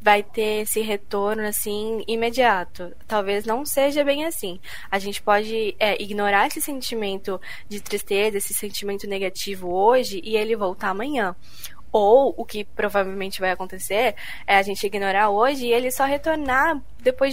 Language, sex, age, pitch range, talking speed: Portuguese, female, 10-29, 205-260 Hz, 150 wpm